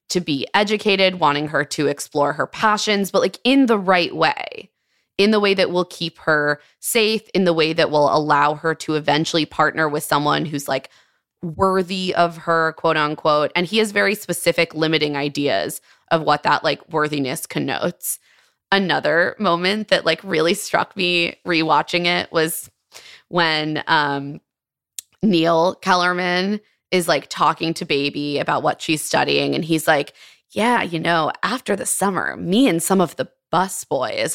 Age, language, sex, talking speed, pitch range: 20-39, English, female, 160 wpm, 150-185 Hz